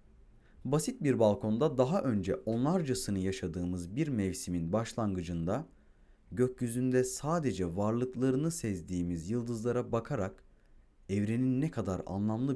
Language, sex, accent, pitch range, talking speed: Turkish, male, native, 90-130 Hz, 95 wpm